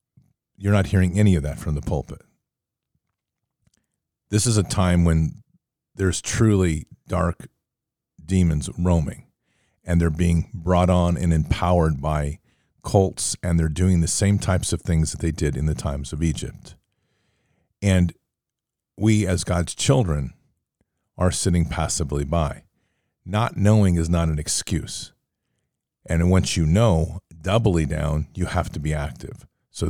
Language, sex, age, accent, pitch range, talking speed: English, male, 50-69, American, 80-105 Hz, 145 wpm